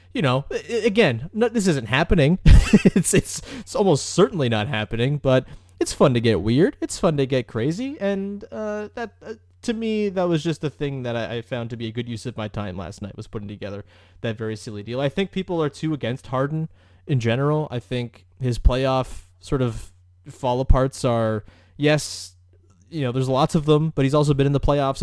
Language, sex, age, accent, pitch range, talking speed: English, male, 20-39, American, 110-150 Hz, 210 wpm